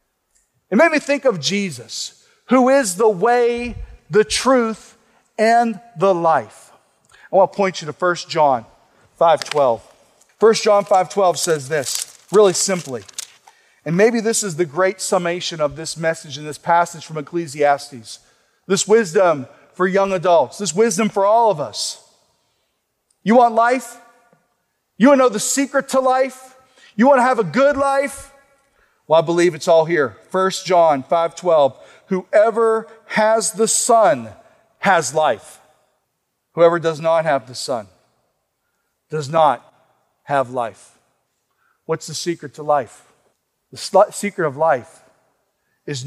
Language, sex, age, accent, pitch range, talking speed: English, male, 40-59, American, 155-225 Hz, 145 wpm